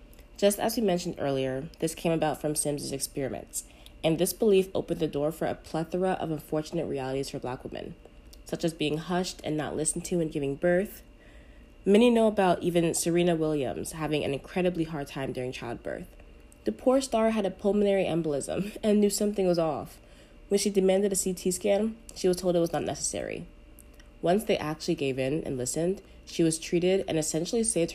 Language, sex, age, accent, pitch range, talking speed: English, female, 20-39, American, 150-195 Hz, 190 wpm